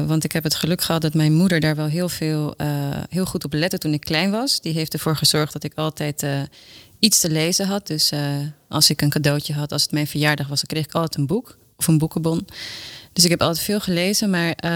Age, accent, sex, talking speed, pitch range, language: 30-49, Dutch, female, 245 wpm, 150-175 Hz, Dutch